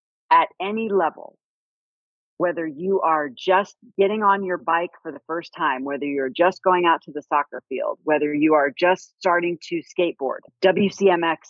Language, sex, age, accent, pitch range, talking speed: English, female, 40-59, American, 150-190 Hz, 165 wpm